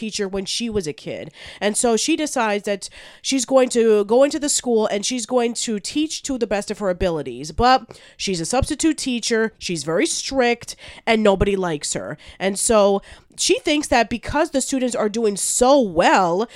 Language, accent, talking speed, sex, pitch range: English, American, 190 wpm, female, 190-250 Hz